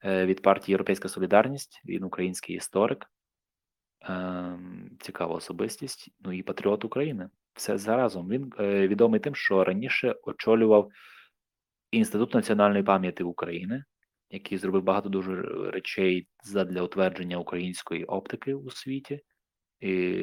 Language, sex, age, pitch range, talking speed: Ukrainian, male, 20-39, 95-110 Hz, 110 wpm